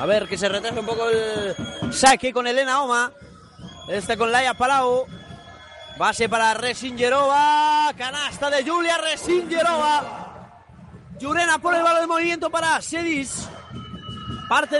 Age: 20-39